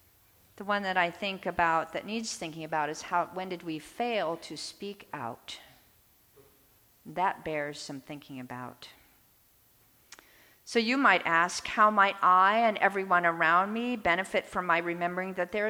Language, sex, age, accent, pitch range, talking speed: English, female, 50-69, American, 160-225 Hz, 155 wpm